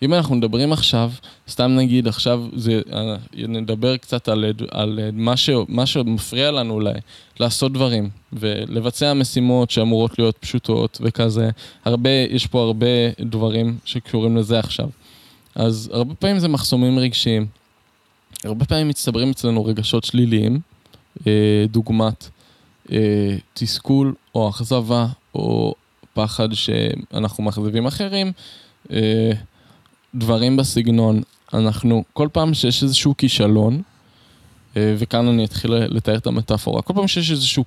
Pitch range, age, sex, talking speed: 110-125 Hz, 20-39, male, 120 wpm